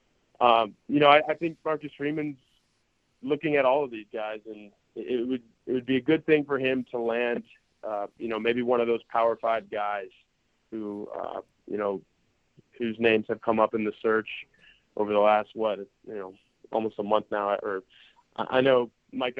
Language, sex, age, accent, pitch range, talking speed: English, male, 20-39, American, 110-125 Hz, 200 wpm